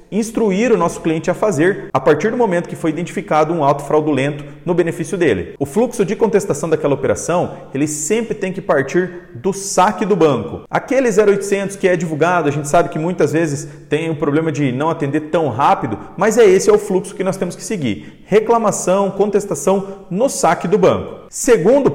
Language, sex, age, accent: Portuguese, male, 40-59, Brazilian